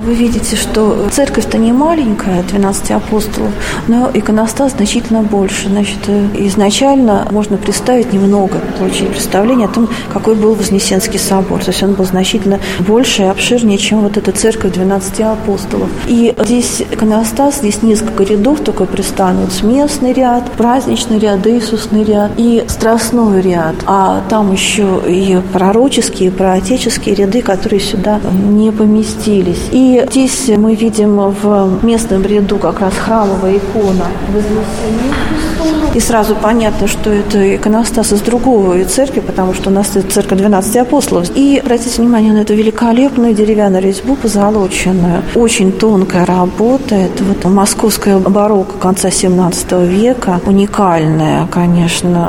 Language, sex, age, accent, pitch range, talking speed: Russian, female, 40-59, native, 195-230 Hz, 135 wpm